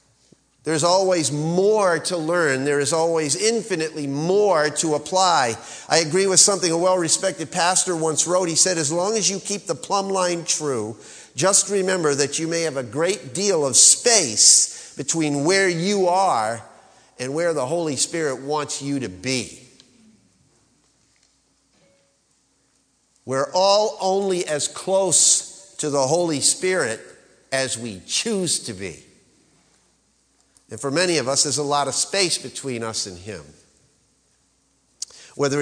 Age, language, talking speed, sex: 50-69, English, 145 wpm, male